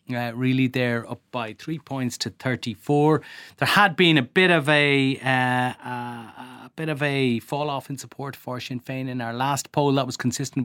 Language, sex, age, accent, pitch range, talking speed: English, male, 30-49, Irish, 110-140 Hz, 205 wpm